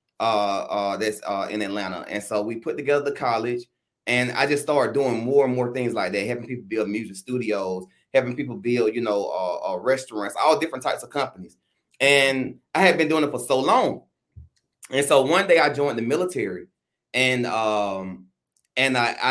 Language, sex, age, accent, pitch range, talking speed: English, male, 30-49, American, 105-130 Hz, 195 wpm